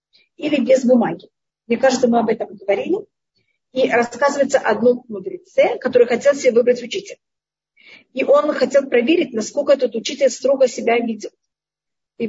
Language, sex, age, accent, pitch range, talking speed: Russian, female, 40-59, native, 235-285 Hz, 140 wpm